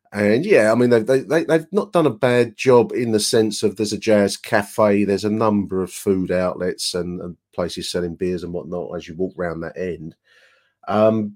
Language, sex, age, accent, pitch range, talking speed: English, male, 40-59, British, 100-130 Hz, 210 wpm